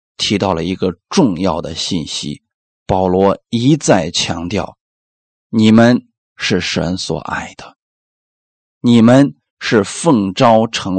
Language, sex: Chinese, male